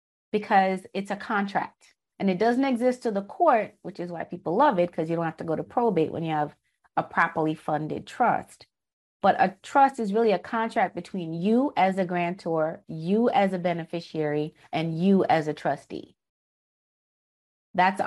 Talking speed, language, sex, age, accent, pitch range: 180 wpm, English, female, 30-49, American, 165-205 Hz